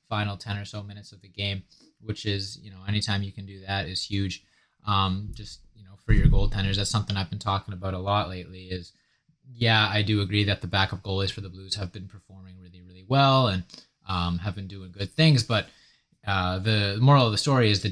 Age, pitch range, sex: 20-39, 95-110 Hz, male